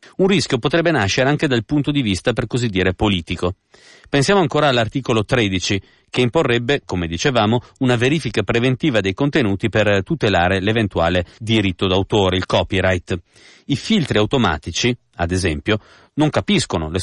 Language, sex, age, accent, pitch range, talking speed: Italian, male, 40-59, native, 100-140 Hz, 145 wpm